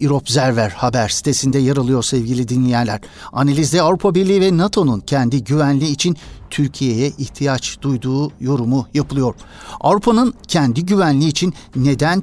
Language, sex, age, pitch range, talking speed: Turkish, male, 60-79, 125-150 Hz, 125 wpm